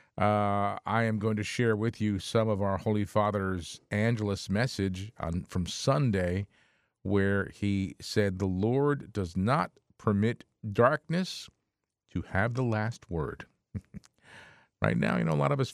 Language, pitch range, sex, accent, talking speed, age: English, 90-115 Hz, male, American, 150 wpm, 50-69